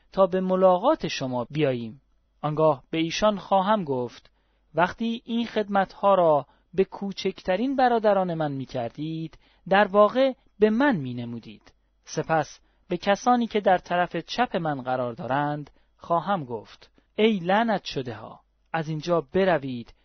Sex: male